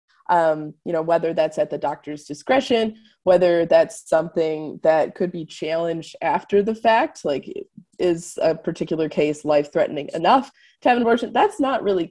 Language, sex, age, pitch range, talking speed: English, female, 20-39, 155-200 Hz, 170 wpm